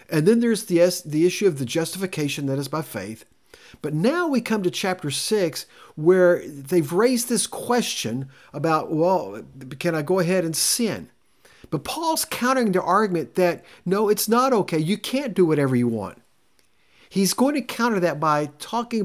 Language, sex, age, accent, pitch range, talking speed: English, male, 50-69, American, 140-195 Hz, 175 wpm